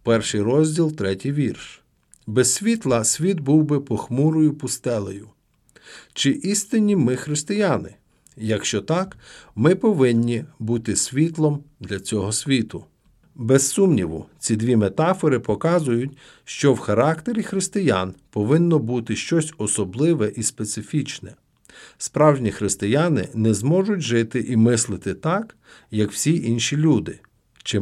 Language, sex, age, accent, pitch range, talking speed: Ukrainian, male, 50-69, native, 115-160 Hz, 115 wpm